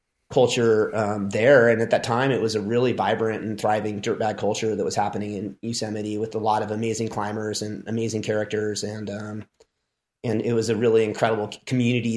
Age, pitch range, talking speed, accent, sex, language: 30-49, 105-120 Hz, 190 wpm, American, male, English